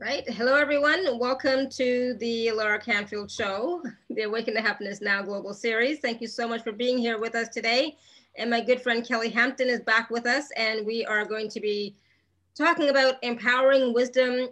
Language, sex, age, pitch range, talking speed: English, female, 30-49, 205-250 Hz, 190 wpm